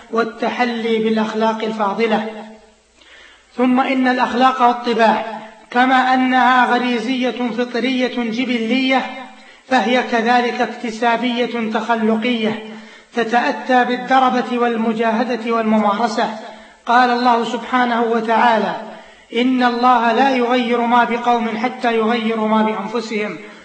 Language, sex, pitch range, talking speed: Arabic, male, 220-245 Hz, 85 wpm